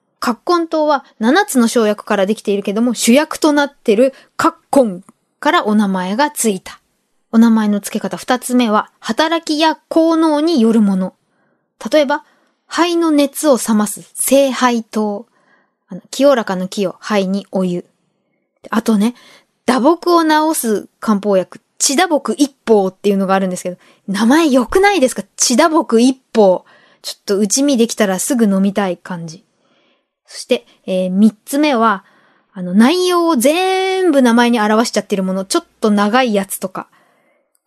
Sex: female